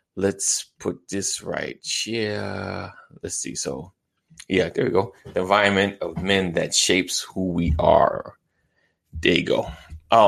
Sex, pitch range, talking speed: male, 90-100 Hz, 135 wpm